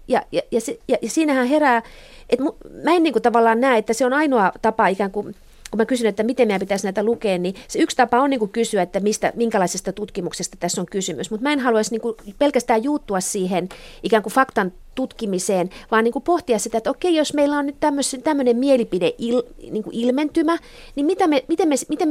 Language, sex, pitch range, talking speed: Finnish, female, 200-270 Hz, 220 wpm